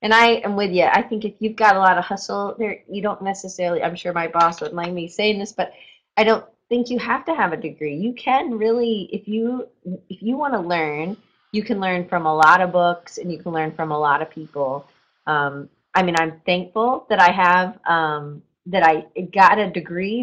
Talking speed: 230 wpm